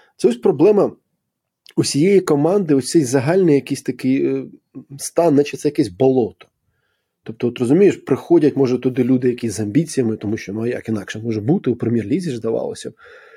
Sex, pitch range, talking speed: male, 120-175 Hz, 155 wpm